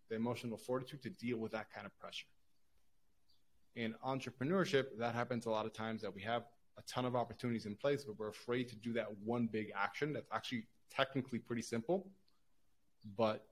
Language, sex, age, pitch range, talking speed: English, male, 20-39, 105-120 Hz, 185 wpm